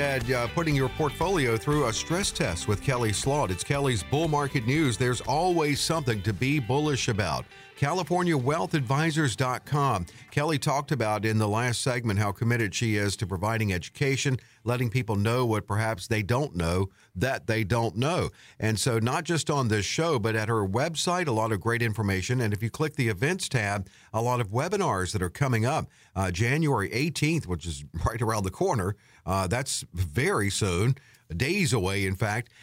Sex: male